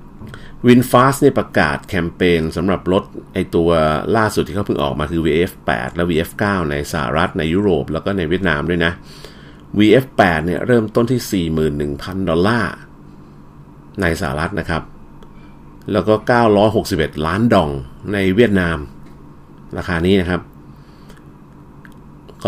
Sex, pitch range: male, 75-105 Hz